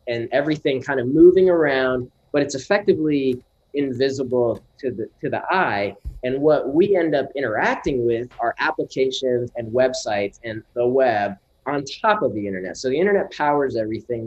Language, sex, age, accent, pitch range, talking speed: English, male, 20-39, American, 105-140 Hz, 165 wpm